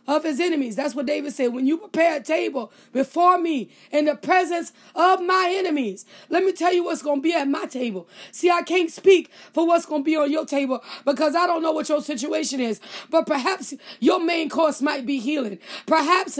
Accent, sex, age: American, female, 20-39